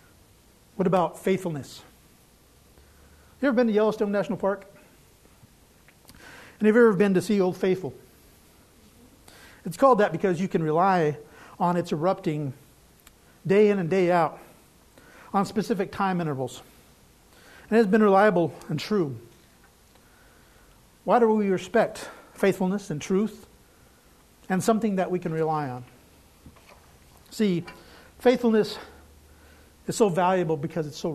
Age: 50-69